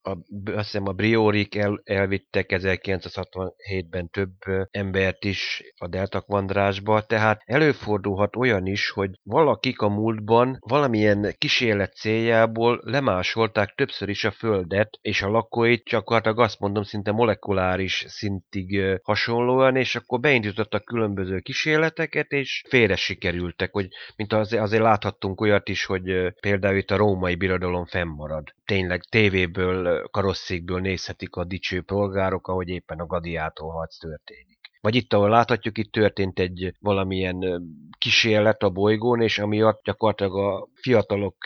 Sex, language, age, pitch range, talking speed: male, Hungarian, 30-49, 95-110 Hz, 130 wpm